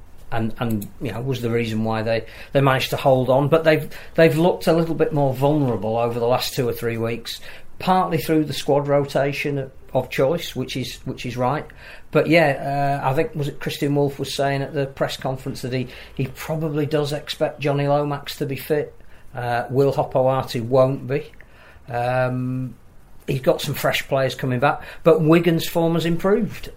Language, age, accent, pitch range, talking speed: English, 40-59, British, 125-150 Hz, 195 wpm